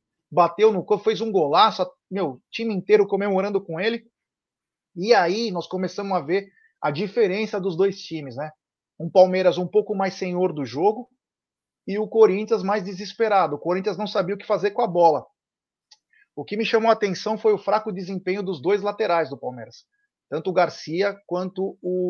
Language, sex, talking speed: Portuguese, male, 180 wpm